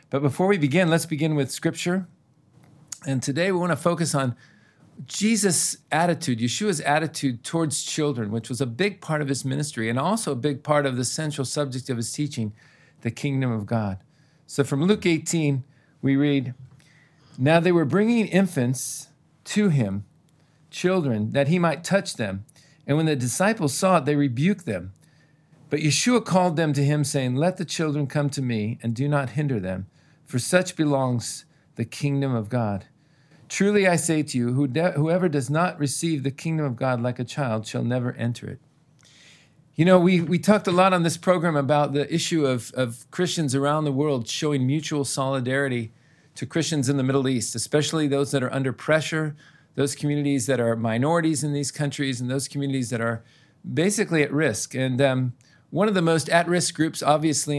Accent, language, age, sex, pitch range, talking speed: American, English, 50-69, male, 130-160 Hz, 185 wpm